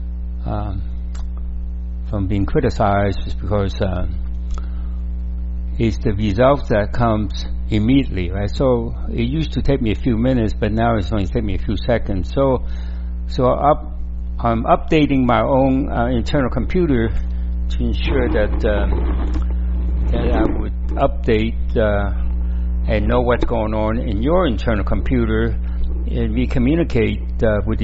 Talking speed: 140 wpm